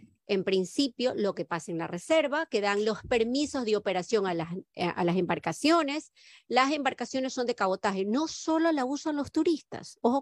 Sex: female